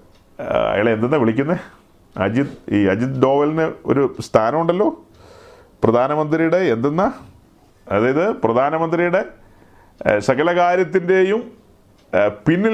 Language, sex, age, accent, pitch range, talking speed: Malayalam, male, 40-59, native, 150-190 Hz, 75 wpm